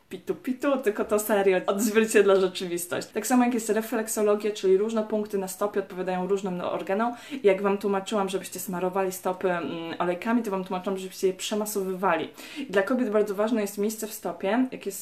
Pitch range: 185-220 Hz